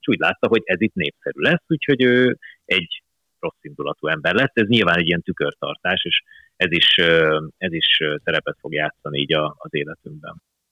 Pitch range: 80-120 Hz